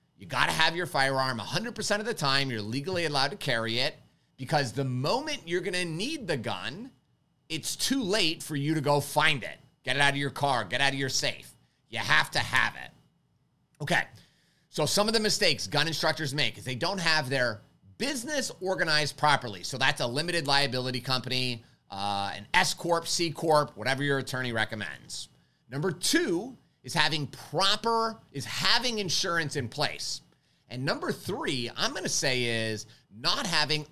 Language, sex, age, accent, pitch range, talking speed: English, male, 30-49, American, 125-170 Hz, 175 wpm